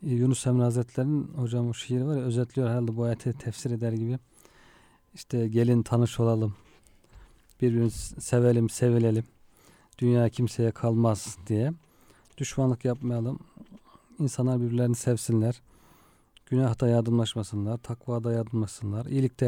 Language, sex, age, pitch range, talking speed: Turkish, male, 40-59, 115-130 Hz, 110 wpm